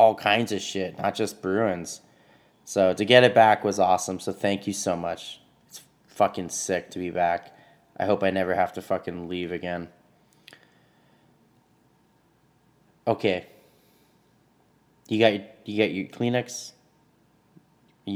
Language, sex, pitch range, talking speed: English, male, 95-115 Hz, 140 wpm